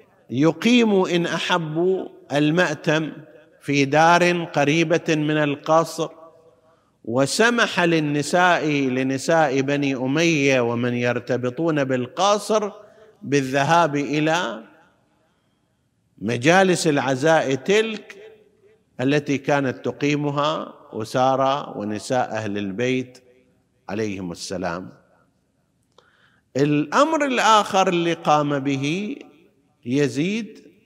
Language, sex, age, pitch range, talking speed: Arabic, male, 50-69, 140-180 Hz, 70 wpm